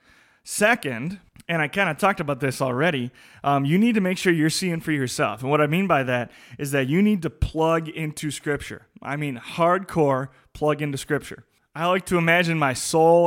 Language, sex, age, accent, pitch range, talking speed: English, male, 20-39, American, 140-170 Hz, 205 wpm